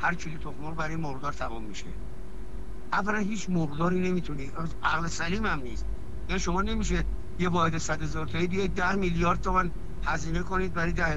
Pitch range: 150-185 Hz